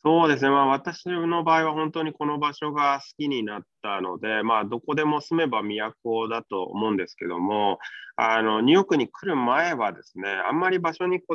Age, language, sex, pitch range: 20-39, Japanese, male, 115-165 Hz